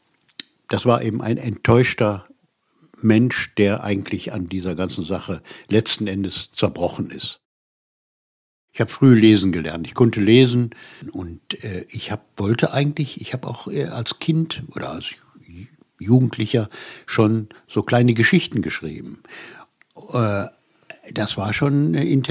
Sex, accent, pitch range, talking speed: male, German, 105-130 Hz, 120 wpm